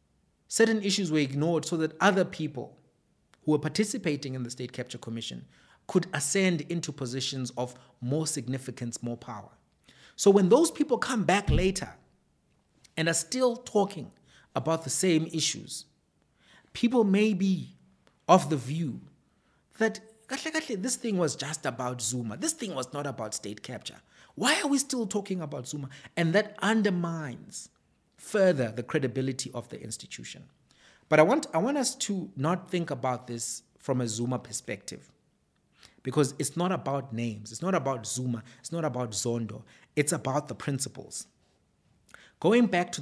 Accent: South African